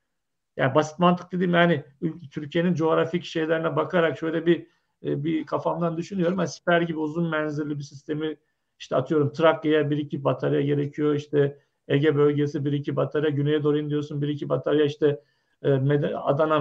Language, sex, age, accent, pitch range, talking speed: Turkish, male, 50-69, native, 150-175 Hz, 160 wpm